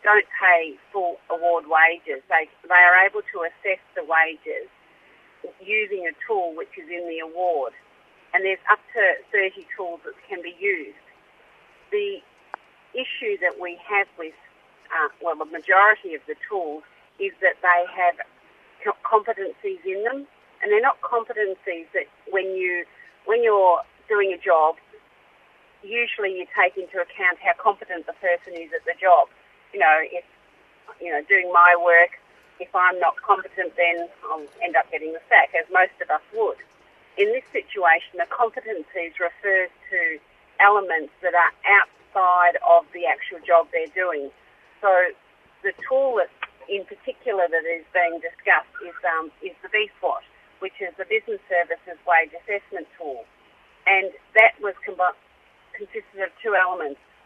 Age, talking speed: 40-59, 155 wpm